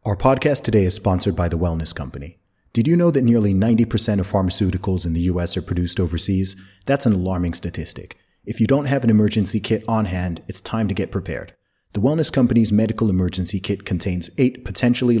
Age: 30-49